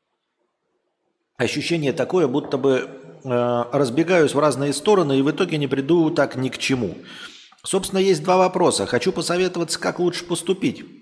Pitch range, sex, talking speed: 110-175 Hz, male, 145 wpm